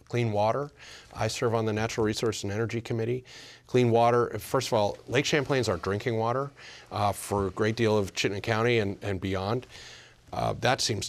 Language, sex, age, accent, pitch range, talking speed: English, male, 40-59, American, 100-120 Hz, 195 wpm